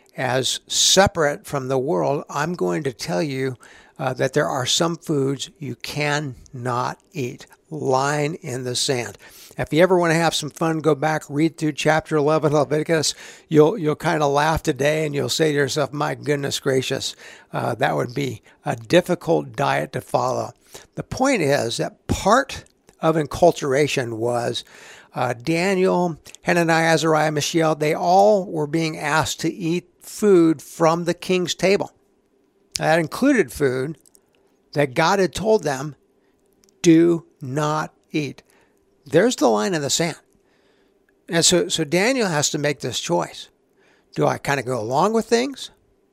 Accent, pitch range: American, 140-175 Hz